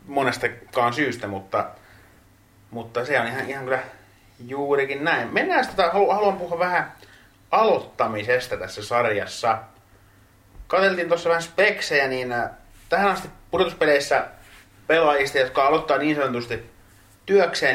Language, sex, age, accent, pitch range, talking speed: Finnish, male, 30-49, native, 100-135 Hz, 110 wpm